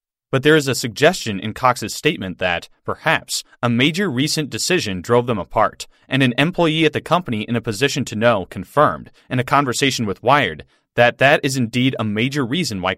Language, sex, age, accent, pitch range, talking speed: English, male, 30-49, American, 115-150 Hz, 195 wpm